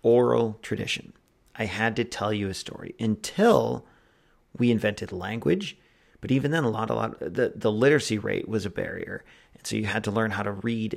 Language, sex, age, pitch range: English, male, 40-59, 105-120 Hz